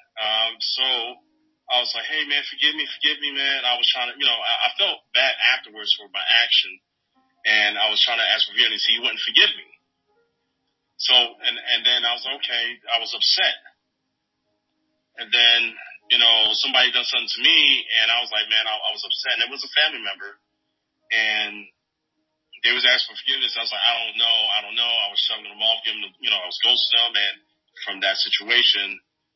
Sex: male